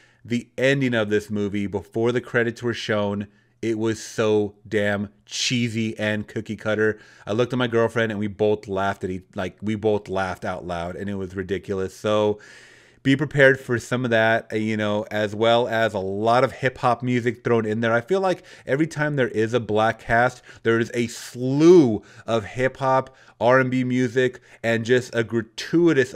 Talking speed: 185 wpm